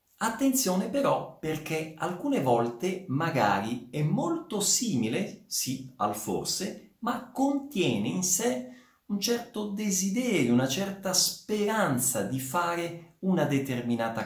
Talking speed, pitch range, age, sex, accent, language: 110 wpm, 130-215 Hz, 50-69, male, native, Italian